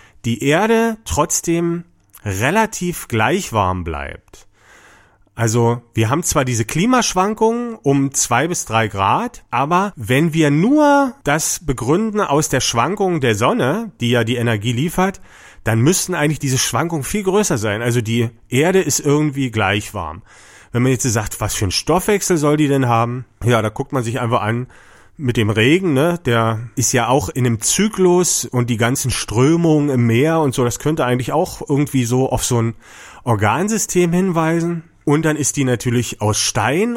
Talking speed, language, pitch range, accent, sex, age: 170 wpm, German, 115-165 Hz, German, male, 40-59